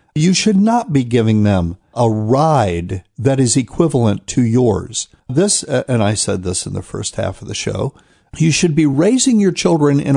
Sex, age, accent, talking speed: male, 60-79, American, 190 wpm